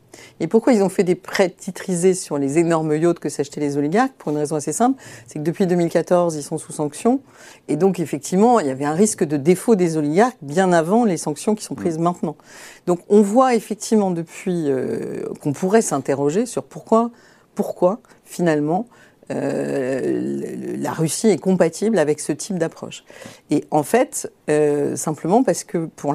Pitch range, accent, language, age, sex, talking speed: 150-205 Hz, French, French, 50-69, female, 180 wpm